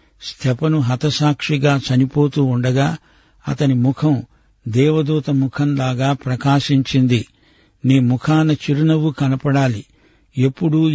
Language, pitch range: Telugu, 125-145 Hz